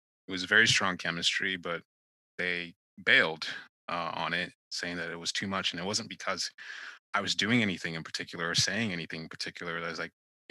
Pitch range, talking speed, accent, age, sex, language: 85-100 Hz, 200 wpm, American, 30-49, male, English